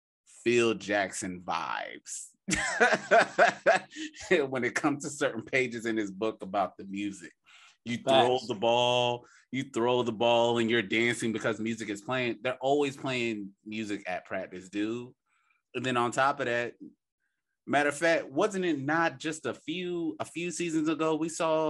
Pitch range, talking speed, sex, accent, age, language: 105-140 Hz, 160 wpm, male, American, 30-49, English